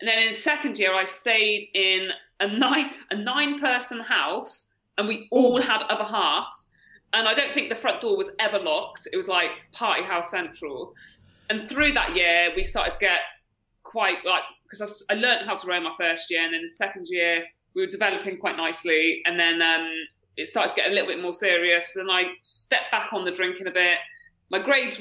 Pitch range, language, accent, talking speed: 180-275 Hz, English, British, 205 wpm